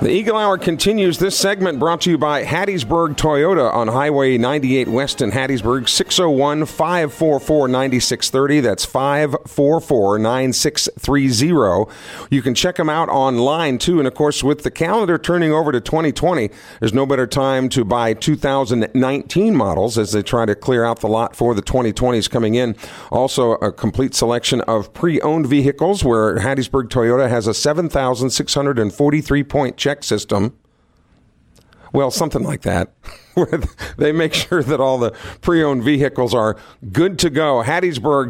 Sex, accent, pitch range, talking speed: male, American, 120-155 Hz, 145 wpm